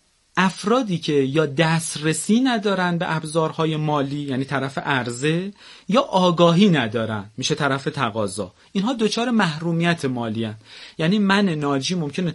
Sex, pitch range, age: male, 135-180 Hz, 40-59